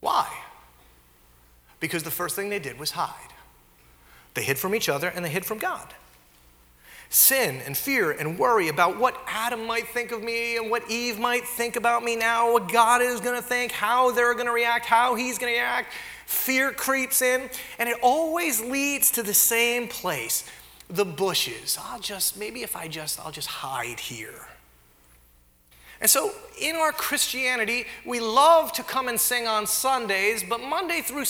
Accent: American